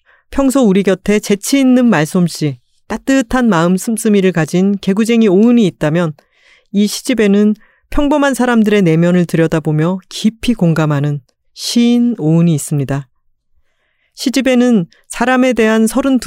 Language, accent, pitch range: Korean, native, 165-225 Hz